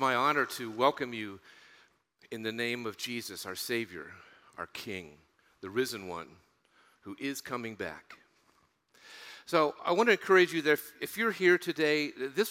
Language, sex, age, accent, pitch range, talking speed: English, male, 40-59, American, 100-135 Hz, 160 wpm